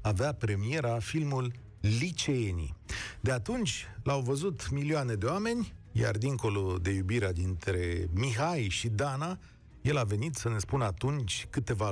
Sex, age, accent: male, 40-59, native